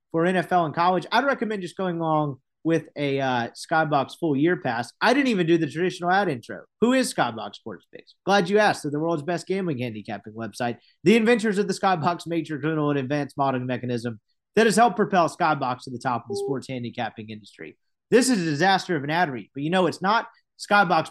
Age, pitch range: 30-49, 135-185 Hz